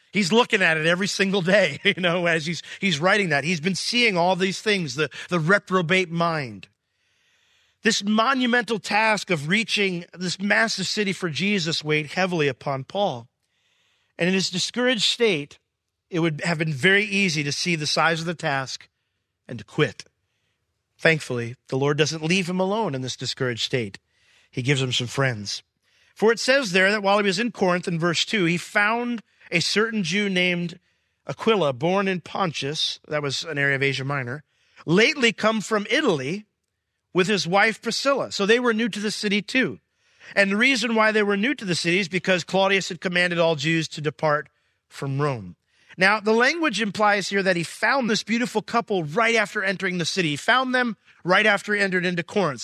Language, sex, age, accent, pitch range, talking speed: English, male, 40-59, American, 155-210 Hz, 190 wpm